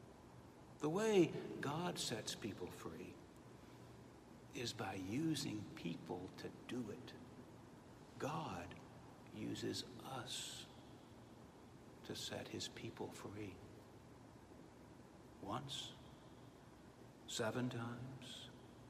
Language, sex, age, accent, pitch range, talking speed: English, male, 60-79, American, 100-140 Hz, 75 wpm